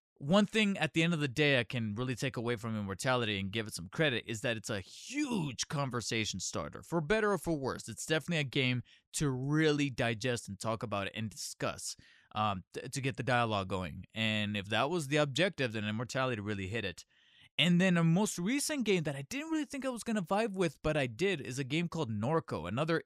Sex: male